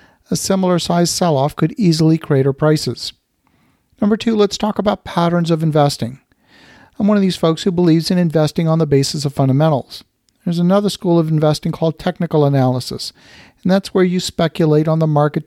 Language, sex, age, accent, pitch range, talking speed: English, male, 50-69, American, 145-175 Hz, 180 wpm